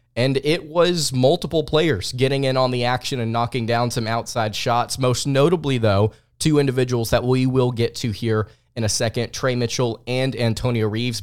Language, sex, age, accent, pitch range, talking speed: English, male, 20-39, American, 115-140 Hz, 185 wpm